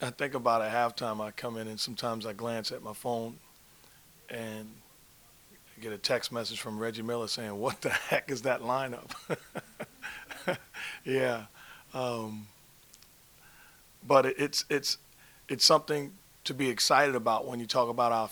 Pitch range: 120-140 Hz